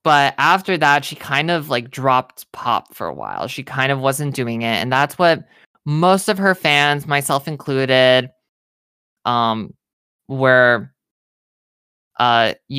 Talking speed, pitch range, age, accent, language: 140 wpm, 125-145 Hz, 20-39, American, English